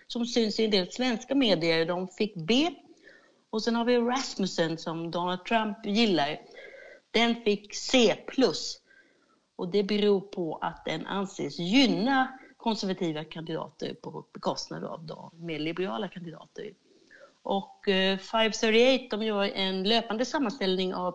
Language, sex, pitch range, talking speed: Swedish, female, 180-240 Hz, 135 wpm